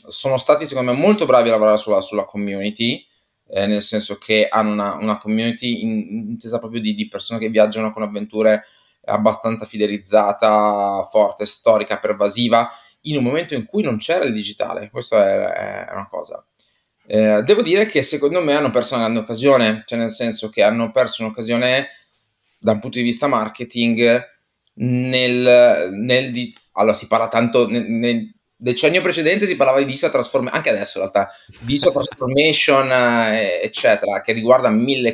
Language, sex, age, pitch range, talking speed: Italian, male, 20-39, 105-125 Hz, 170 wpm